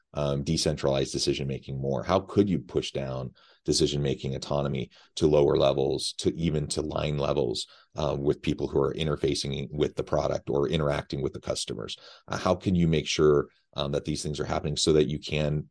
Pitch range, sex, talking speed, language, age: 70-75 Hz, male, 185 wpm, English, 30-49